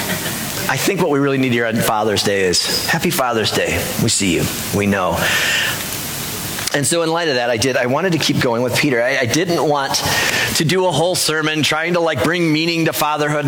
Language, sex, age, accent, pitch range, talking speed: English, male, 30-49, American, 135-170 Hz, 225 wpm